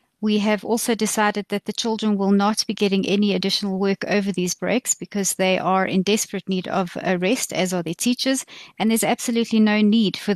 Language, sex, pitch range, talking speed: English, female, 190-215 Hz, 210 wpm